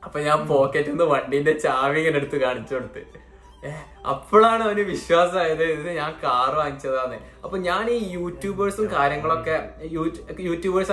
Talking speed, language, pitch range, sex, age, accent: 120 wpm, Malayalam, 145-195 Hz, male, 20-39, native